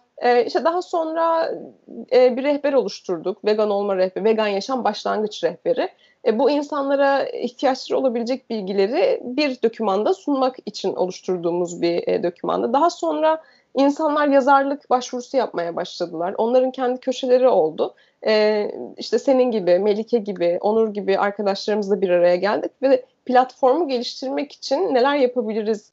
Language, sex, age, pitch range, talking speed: Turkish, female, 30-49, 210-290 Hz, 120 wpm